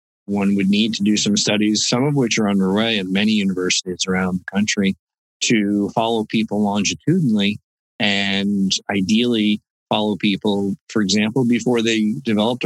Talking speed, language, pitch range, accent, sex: 145 wpm, English, 95-115 Hz, American, male